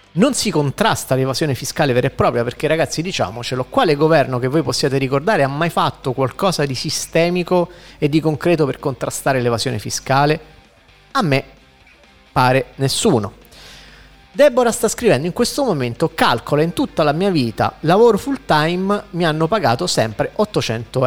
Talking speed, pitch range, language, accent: 155 wpm, 135-170 Hz, Italian, native